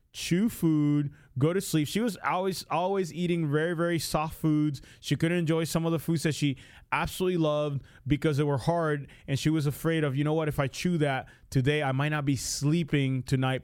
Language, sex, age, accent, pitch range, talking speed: English, male, 20-39, American, 130-165 Hz, 210 wpm